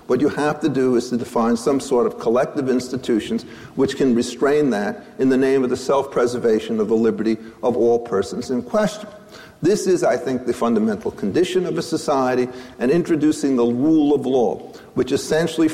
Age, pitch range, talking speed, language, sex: 50-69, 120-185 Hz, 185 wpm, English, male